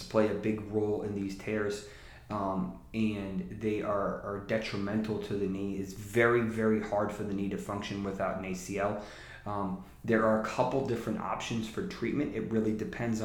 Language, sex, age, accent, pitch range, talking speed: English, male, 30-49, American, 100-110 Hz, 175 wpm